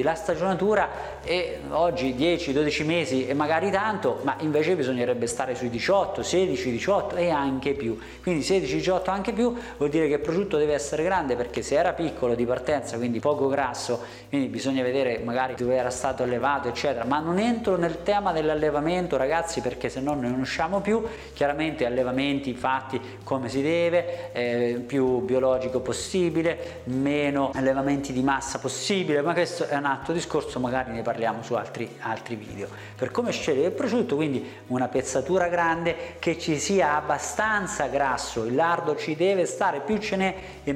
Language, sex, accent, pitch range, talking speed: Italian, male, native, 125-170 Hz, 165 wpm